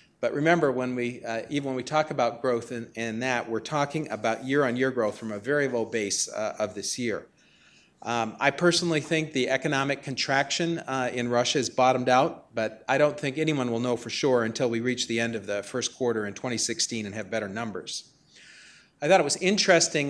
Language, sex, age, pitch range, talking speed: English, male, 40-59, 115-150 Hz, 210 wpm